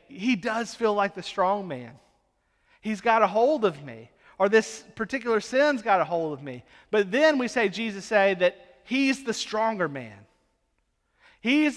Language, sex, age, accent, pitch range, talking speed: English, male, 40-59, American, 180-225 Hz, 180 wpm